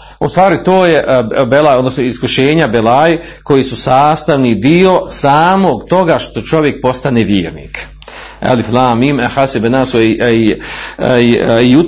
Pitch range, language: 140-200 Hz, Croatian